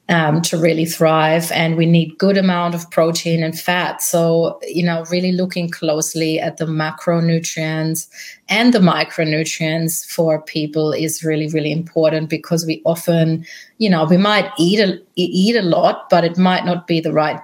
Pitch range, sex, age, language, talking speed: 160-180 Hz, female, 30-49, English, 170 wpm